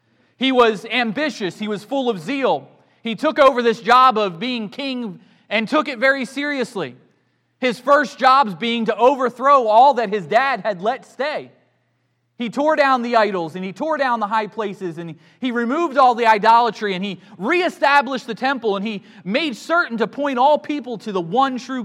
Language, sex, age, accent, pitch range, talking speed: English, male, 30-49, American, 175-260 Hz, 190 wpm